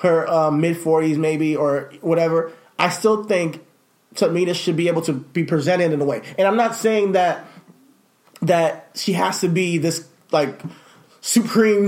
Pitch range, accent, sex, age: 165-200 Hz, American, male, 30-49